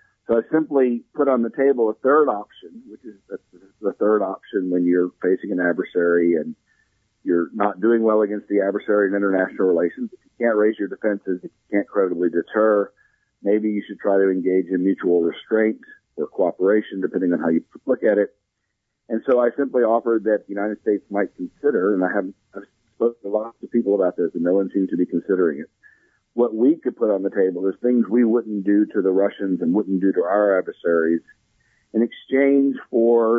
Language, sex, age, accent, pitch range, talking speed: English, male, 50-69, American, 95-115 Hz, 200 wpm